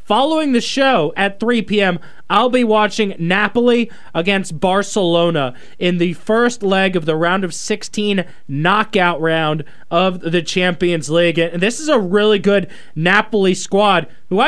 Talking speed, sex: 150 wpm, male